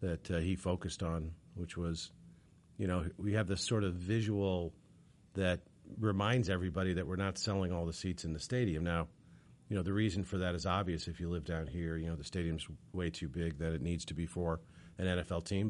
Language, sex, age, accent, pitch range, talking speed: English, male, 40-59, American, 85-100 Hz, 220 wpm